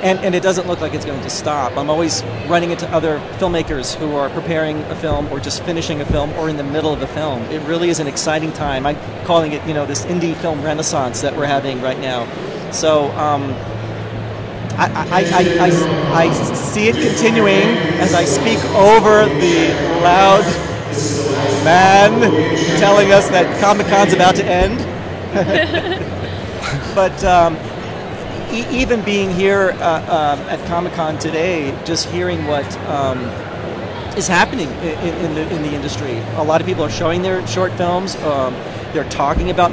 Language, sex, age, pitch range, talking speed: English, male, 40-59, 140-175 Hz, 170 wpm